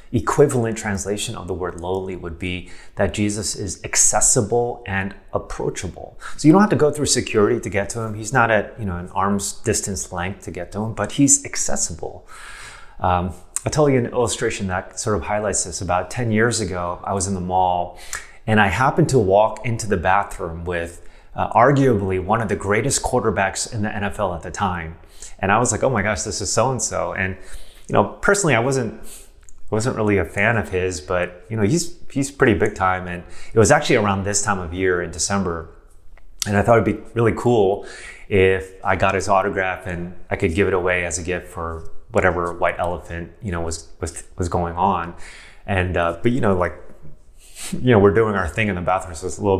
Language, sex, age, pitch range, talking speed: English, male, 30-49, 90-110 Hz, 215 wpm